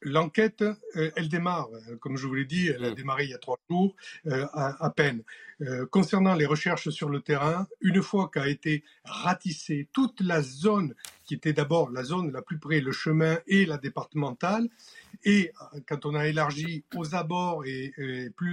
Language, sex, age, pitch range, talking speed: French, male, 50-69, 140-170 Hz, 175 wpm